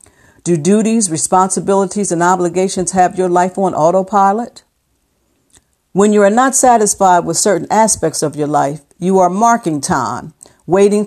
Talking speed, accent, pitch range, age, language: 140 wpm, American, 160-205 Hz, 50-69, English